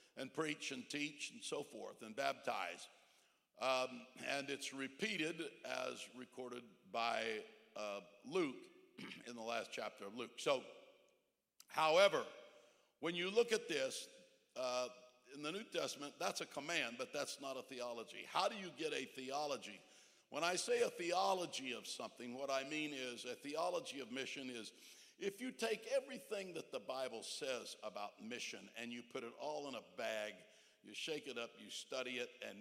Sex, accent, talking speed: male, American, 170 wpm